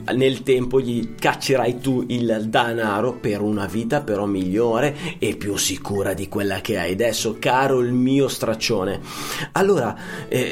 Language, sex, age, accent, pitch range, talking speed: Italian, male, 30-49, native, 110-145 Hz, 150 wpm